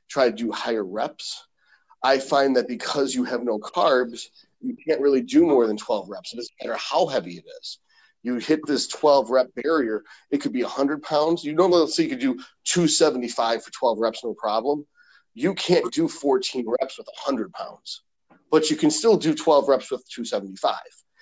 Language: English